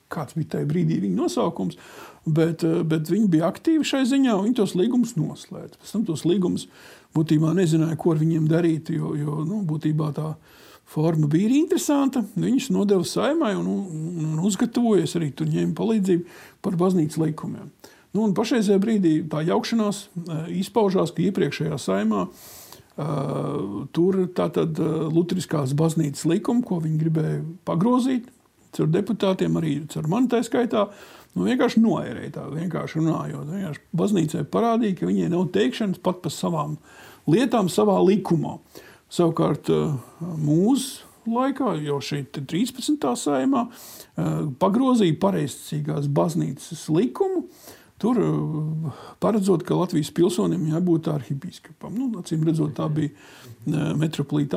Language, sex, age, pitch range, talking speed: English, male, 50-69, 155-205 Hz, 130 wpm